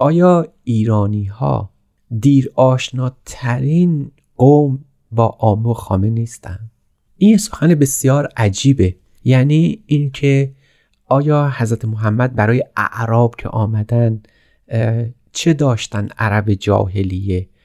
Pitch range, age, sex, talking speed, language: 105-135 Hz, 30-49, male, 85 wpm, Persian